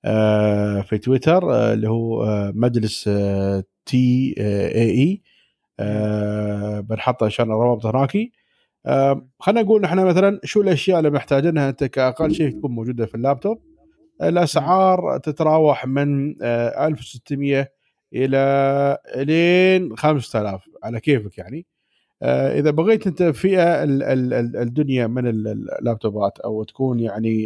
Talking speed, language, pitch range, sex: 115 wpm, Arabic, 115-160 Hz, male